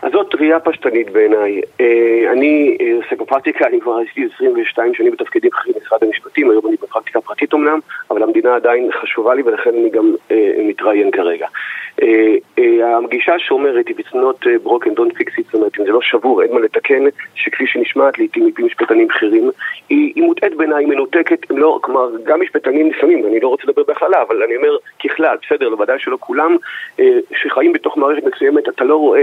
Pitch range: 350-435 Hz